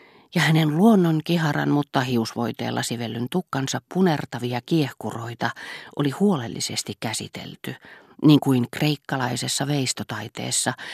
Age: 40-59